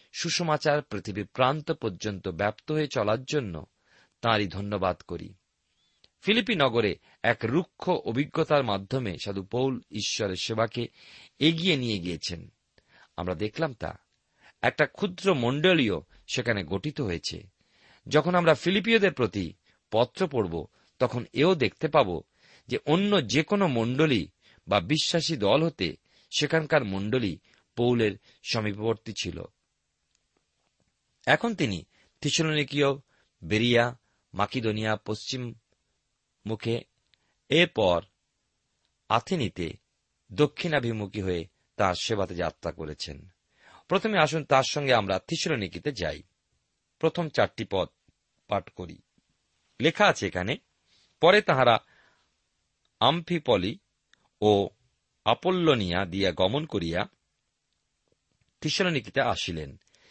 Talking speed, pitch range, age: 95 wpm, 100-155 Hz, 40-59